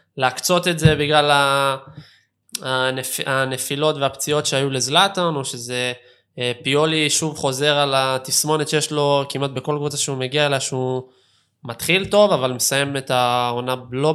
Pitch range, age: 125-150 Hz, 20-39